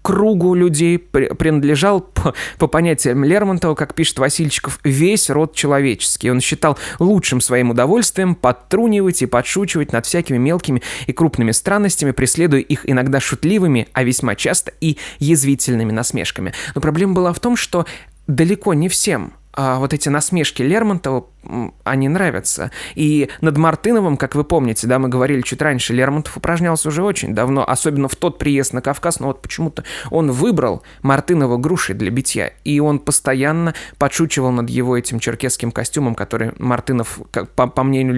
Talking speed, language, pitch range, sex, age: 155 wpm, Russian, 125-165 Hz, male, 20-39